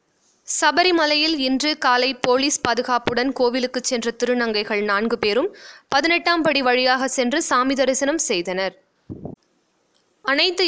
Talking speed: 100 wpm